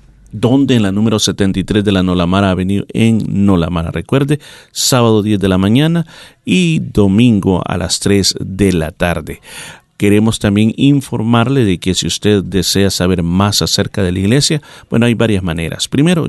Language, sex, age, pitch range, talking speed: Spanish, male, 40-59, 95-125 Hz, 160 wpm